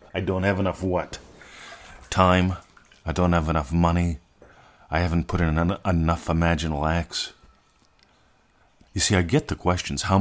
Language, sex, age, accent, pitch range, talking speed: English, male, 50-69, American, 80-95 Hz, 155 wpm